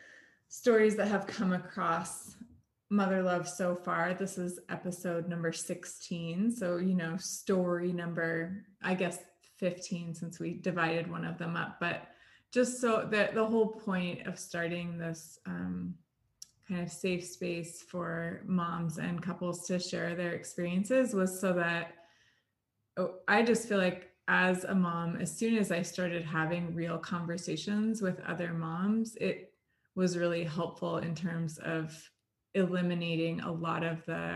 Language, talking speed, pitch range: English, 150 wpm, 170-195 Hz